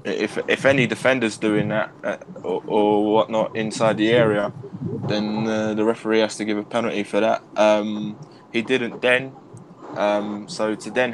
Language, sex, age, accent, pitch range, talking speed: English, male, 20-39, British, 105-115 Hz, 165 wpm